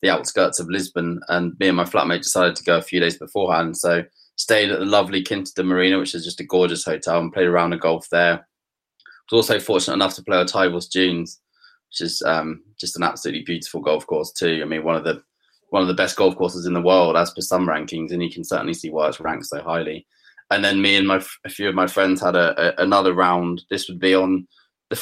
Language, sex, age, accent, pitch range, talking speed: English, male, 20-39, British, 85-95 Hz, 245 wpm